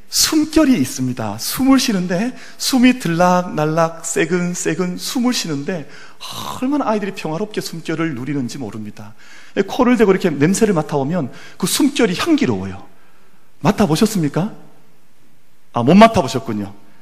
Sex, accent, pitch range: male, native, 140-215 Hz